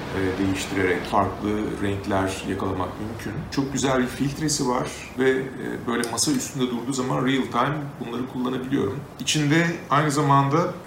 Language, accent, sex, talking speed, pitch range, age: Turkish, native, male, 125 wpm, 110-140 Hz, 40-59